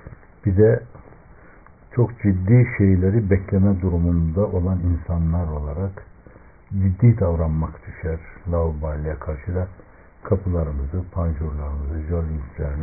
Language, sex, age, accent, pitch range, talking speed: Turkish, male, 60-79, native, 80-100 Hz, 90 wpm